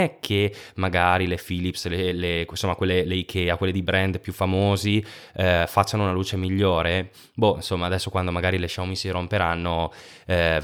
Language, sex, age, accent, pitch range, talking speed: Italian, male, 20-39, native, 85-105 Hz, 170 wpm